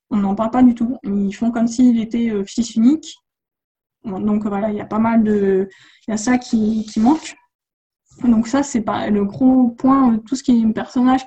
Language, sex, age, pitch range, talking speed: French, female, 20-39, 215-260 Hz, 215 wpm